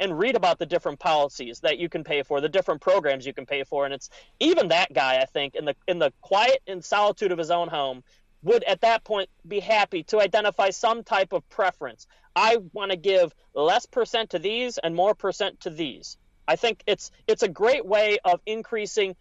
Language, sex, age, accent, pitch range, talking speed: English, male, 30-49, American, 180-265 Hz, 220 wpm